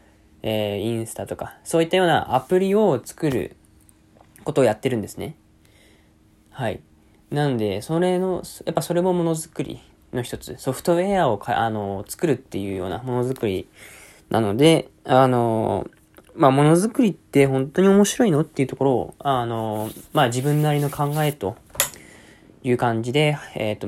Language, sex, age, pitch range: Japanese, male, 20-39, 105-145 Hz